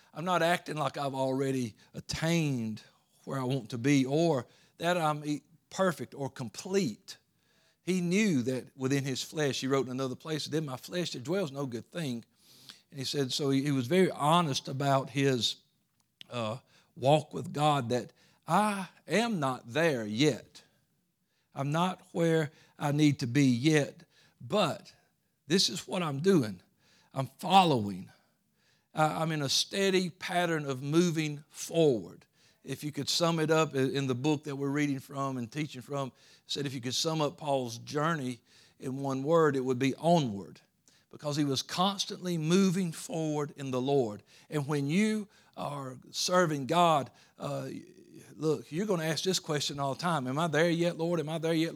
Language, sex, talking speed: English, male, 170 wpm